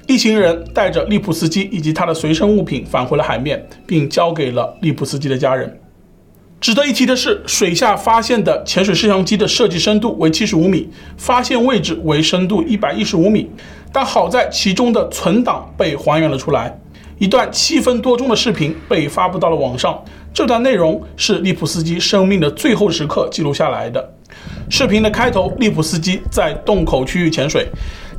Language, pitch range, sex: Chinese, 155-210 Hz, male